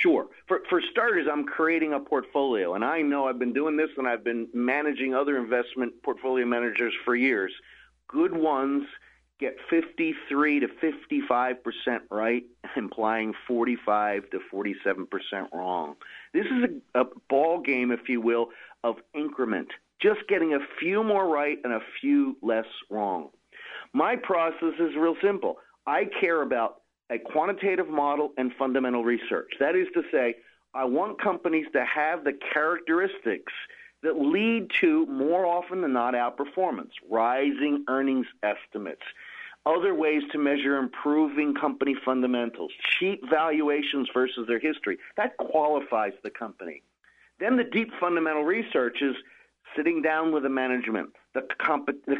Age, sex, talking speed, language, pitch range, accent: 40-59, male, 145 wpm, English, 125-175 Hz, American